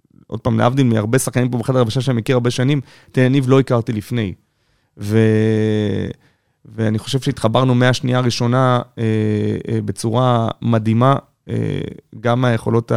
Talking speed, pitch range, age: 145 wpm, 115-130 Hz, 30-49